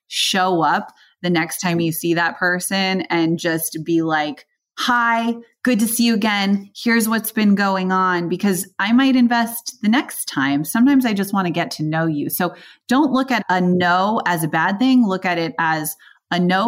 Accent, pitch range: American, 170-220 Hz